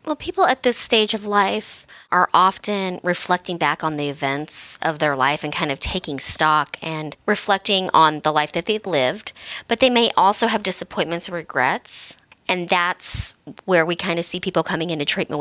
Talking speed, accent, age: 190 wpm, American, 30-49